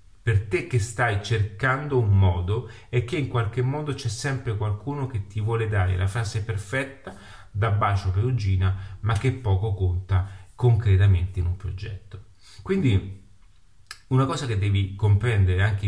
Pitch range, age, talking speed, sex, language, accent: 95-120 Hz, 30-49, 155 wpm, male, Italian, native